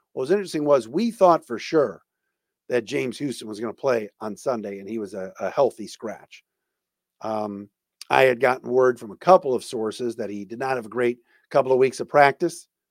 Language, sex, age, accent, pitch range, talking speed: English, male, 50-69, American, 120-170 Hz, 215 wpm